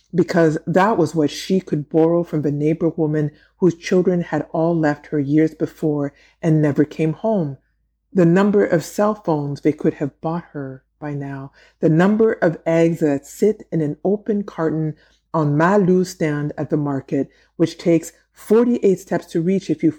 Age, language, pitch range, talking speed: 50-69, English, 155-180 Hz, 180 wpm